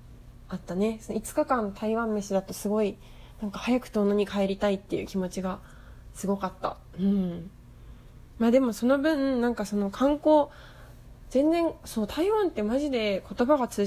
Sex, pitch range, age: female, 195-245 Hz, 20-39